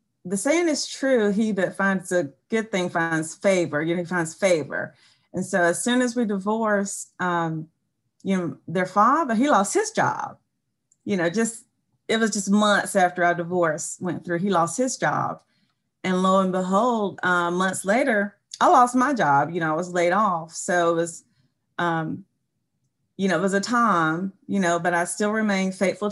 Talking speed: 190 wpm